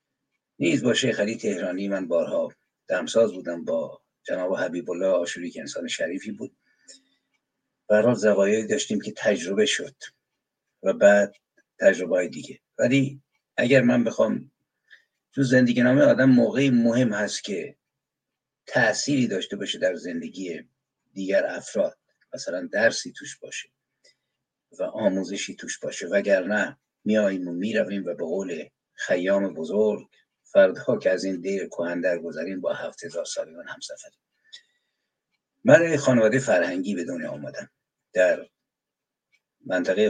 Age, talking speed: 60-79, 125 wpm